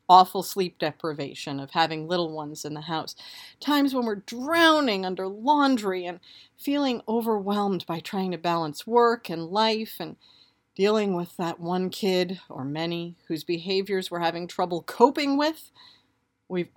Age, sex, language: 40-59, female, English